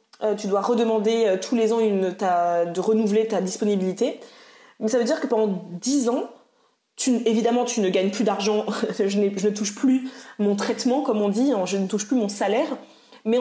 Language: French